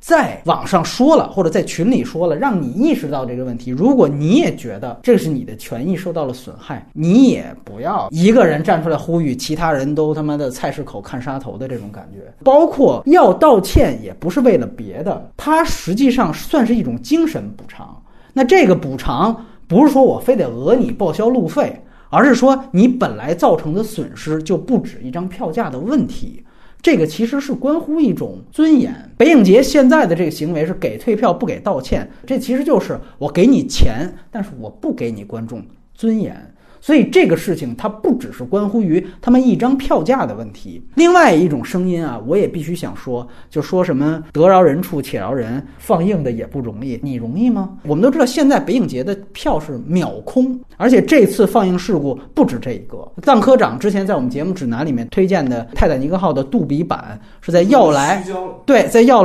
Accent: native